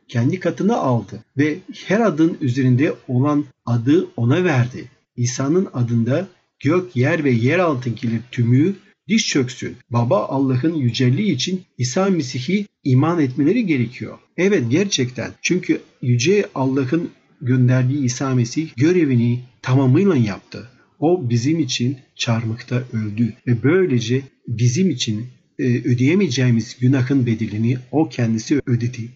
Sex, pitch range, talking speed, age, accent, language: male, 120-145 Hz, 115 wpm, 50-69, native, Turkish